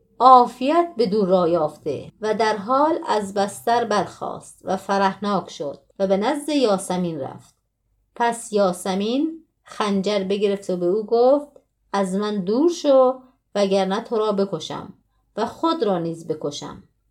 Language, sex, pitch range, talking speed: Persian, female, 195-255 Hz, 135 wpm